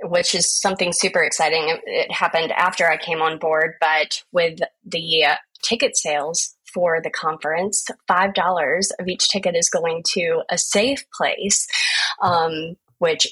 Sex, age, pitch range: female, 20-39, 160-205 Hz